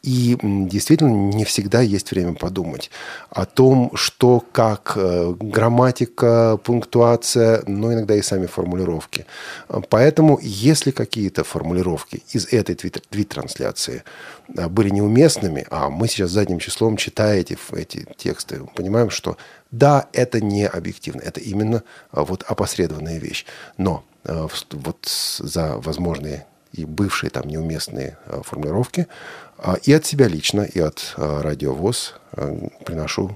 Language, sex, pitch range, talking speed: Russian, male, 85-120 Hz, 115 wpm